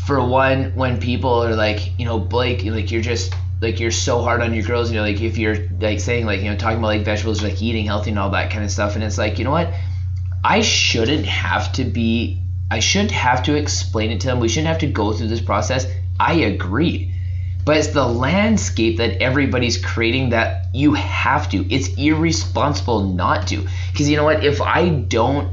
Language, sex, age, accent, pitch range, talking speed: English, male, 20-39, American, 90-110 Hz, 220 wpm